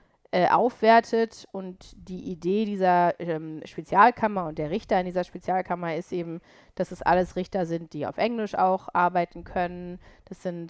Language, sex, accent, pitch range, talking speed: German, female, German, 170-195 Hz, 155 wpm